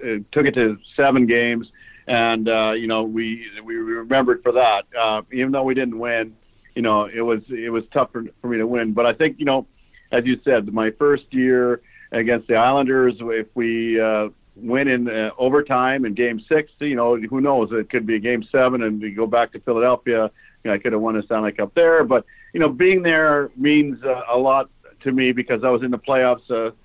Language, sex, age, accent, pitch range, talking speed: English, male, 50-69, American, 115-135 Hz, 230 wpm